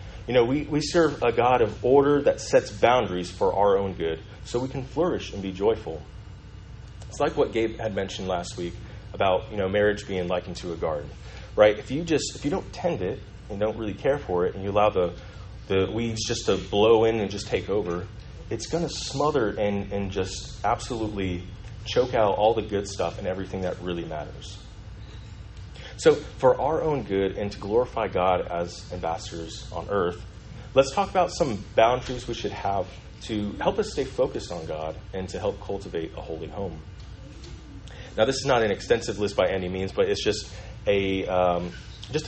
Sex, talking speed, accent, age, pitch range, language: male, 195 wpm, American, 30-49, 95-115 Hz, English